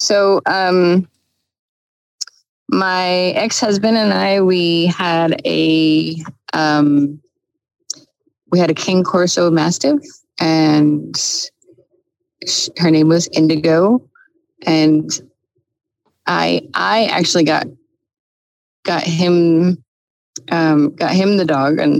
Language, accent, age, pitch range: English, American, 30-49, 155-190 Hz